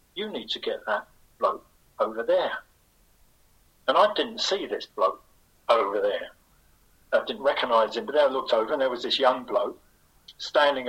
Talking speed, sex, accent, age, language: 170 wpm, male, British, 50-69, English